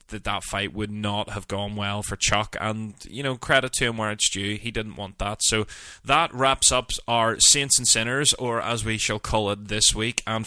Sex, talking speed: male, 230 wpm